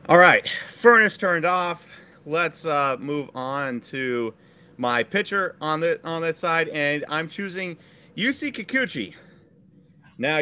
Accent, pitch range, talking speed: American, 130-175 Hz, 130 wpm